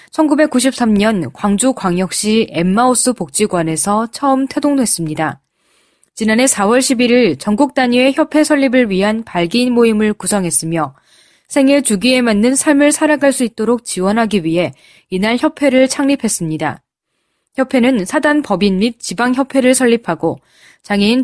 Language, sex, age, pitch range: Korean, female, 20-39, 190-270 Hz